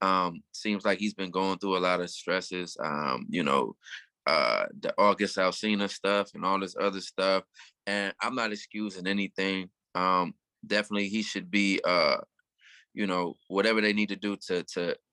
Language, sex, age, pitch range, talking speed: English, male, 20-39, 95-105 Hz, 175 wpm